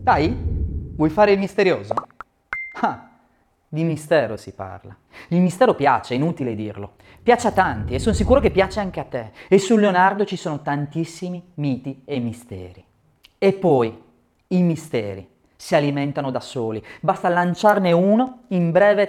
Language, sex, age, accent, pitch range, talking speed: Italian, male, 30-49, native, 135-205 Hz, 155 wpm